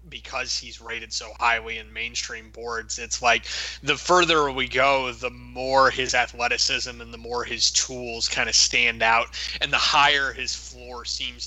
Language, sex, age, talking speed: English, male, 20-39, 175 wpm